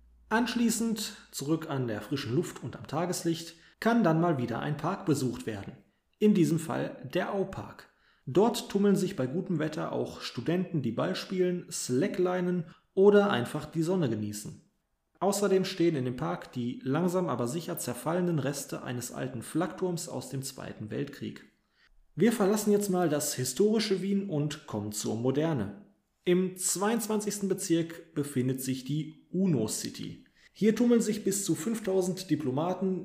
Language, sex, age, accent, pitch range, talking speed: German, male, 30-49, German, 135-185 Hz, 150 wpm